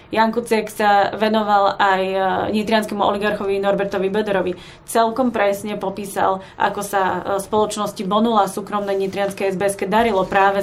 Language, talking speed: Slovak, 115 wpm